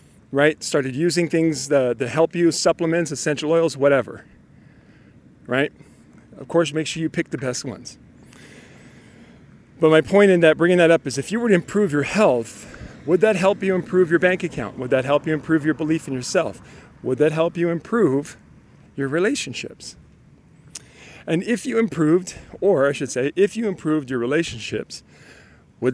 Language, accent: English, American